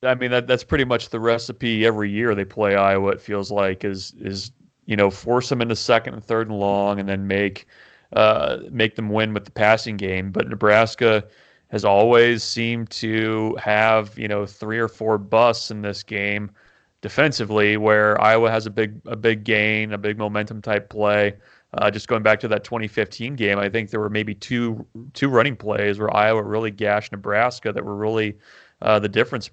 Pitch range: 105-115 Hz